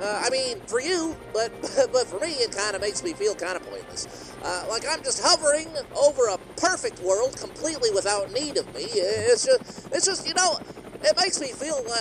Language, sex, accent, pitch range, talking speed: English, male, American, 270-450 Hz, 200 wpm